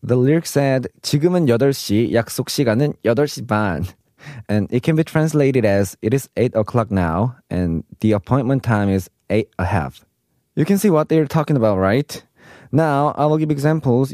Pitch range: 105-150 Hz